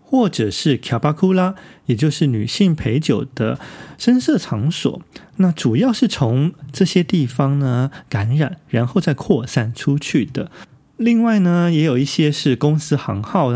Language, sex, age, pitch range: Chinese, male, 30-49, 115-160 Hz